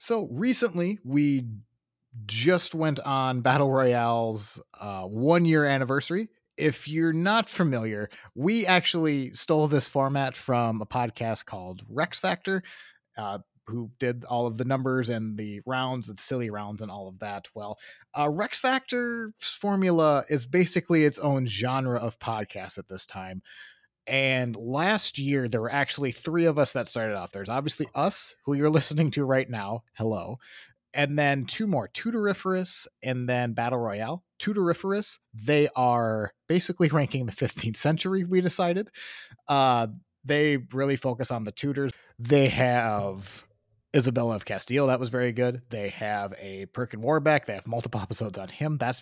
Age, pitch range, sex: 30-49, 115-160 Hz, male